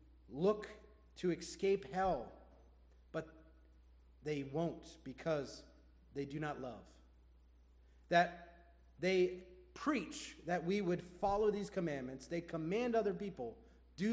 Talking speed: 110 wpm